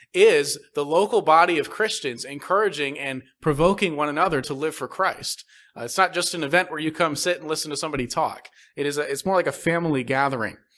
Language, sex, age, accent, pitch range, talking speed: English, male, 30-49, American, 145-185 Hz, 215 wpm